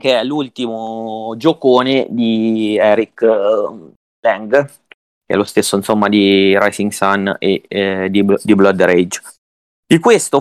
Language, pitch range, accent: Italian, 105-130 Hz, native